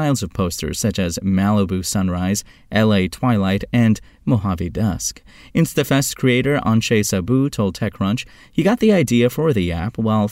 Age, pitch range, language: 30-49, 95-130 Hz, English